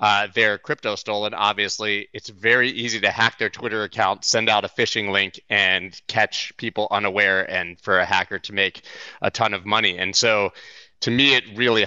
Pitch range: 100-115 Hz